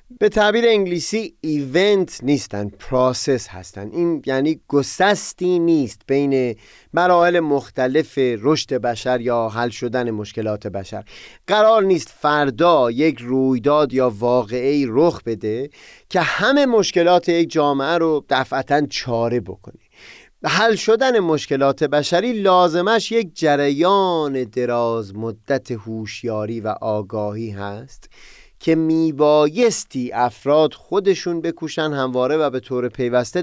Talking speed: 110 wpm